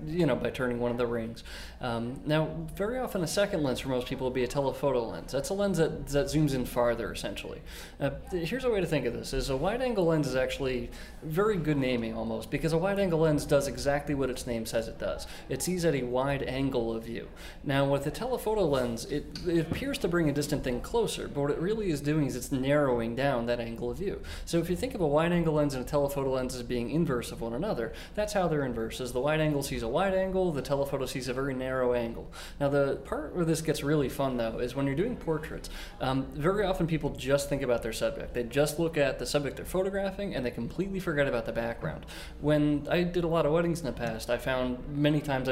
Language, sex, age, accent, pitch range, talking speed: English, male, 20-39, American, 125-160 Hz, 250 wpm